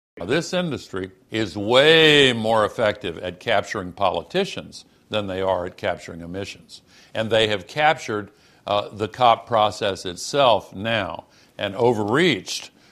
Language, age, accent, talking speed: English, 60-79, American, 125 wpm